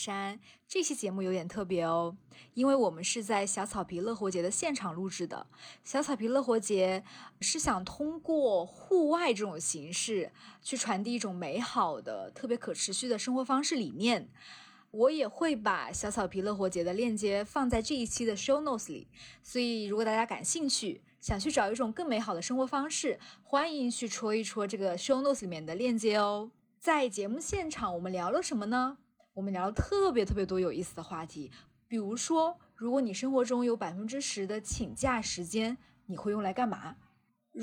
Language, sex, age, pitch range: Chinese, female, 20-39, 195-265 Hz